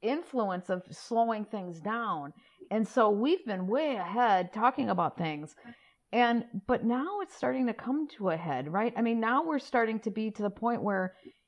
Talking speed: 190 wpm